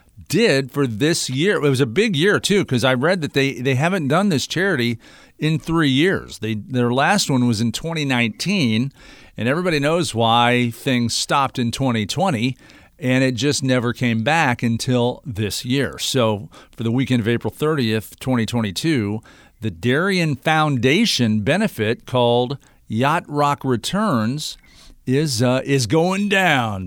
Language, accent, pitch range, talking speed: English, American, 110-145 Hz, 150 wpm